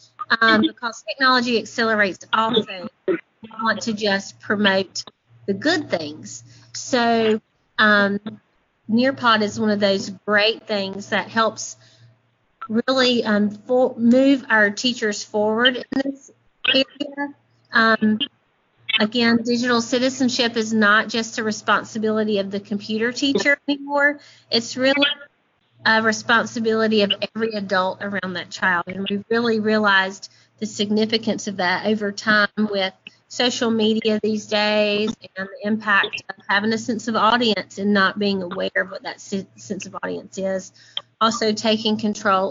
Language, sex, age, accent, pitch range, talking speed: English, female, 30-49, American, 200-235 Hz, 135 wpm